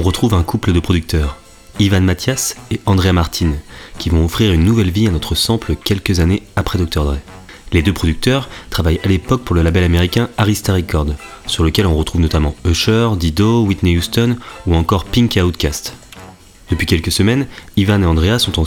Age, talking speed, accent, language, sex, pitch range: 30-49, 185 wpm, French, French, male, 85-105 Hz